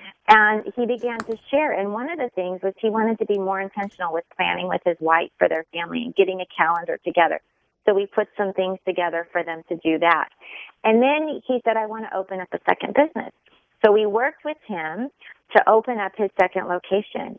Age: 30-49